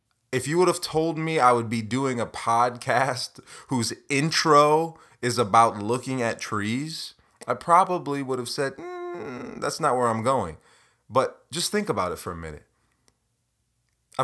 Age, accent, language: 30-49, American, English